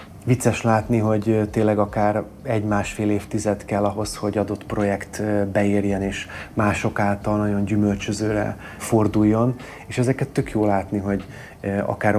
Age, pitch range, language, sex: 30-49, 100-110 Hz, Hungarian, male